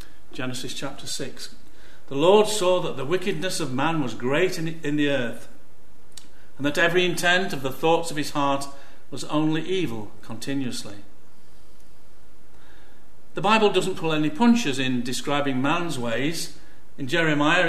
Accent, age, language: British, 50-69, English